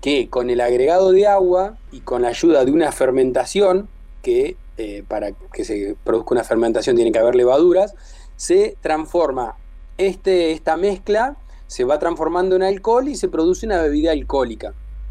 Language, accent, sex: Spanish, Argentinian, male